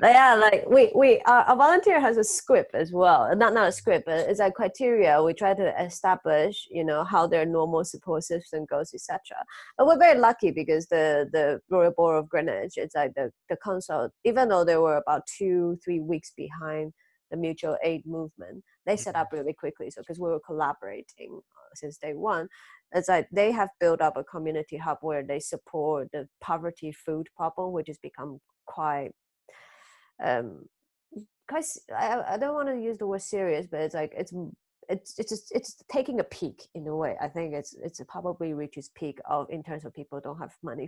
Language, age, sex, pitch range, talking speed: English, 30-49, female, 155-205 Hz, 200 wpm